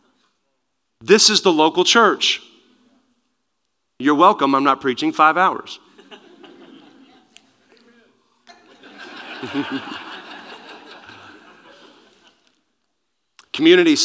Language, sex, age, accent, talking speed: English, male, 40-59, American, 55 wpm